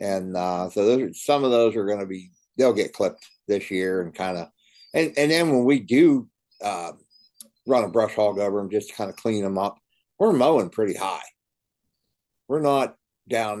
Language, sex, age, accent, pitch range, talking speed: English, male, 60-79, American, 90-115 Hz, 205 wpm